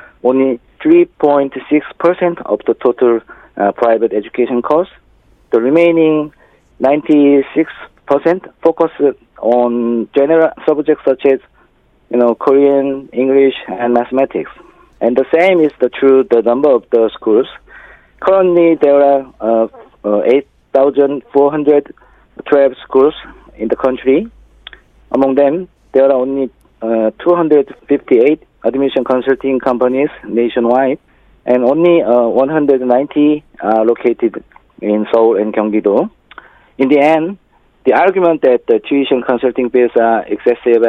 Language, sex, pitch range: Korean, male, 115-145 Hz